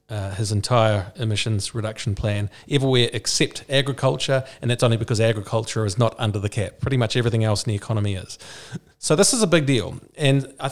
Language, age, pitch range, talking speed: English, 40-59, 110-135 Hz, 195 wpm